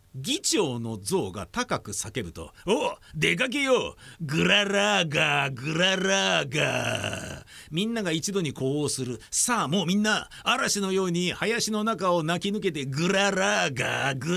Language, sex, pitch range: Japanese, male, 145-200 Hz